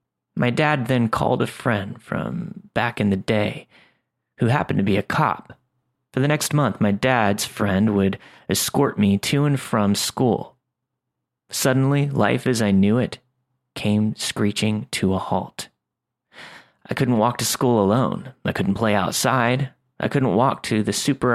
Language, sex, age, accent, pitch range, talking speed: English, male, 30-49, American, 100-130 Hz, 165 wpm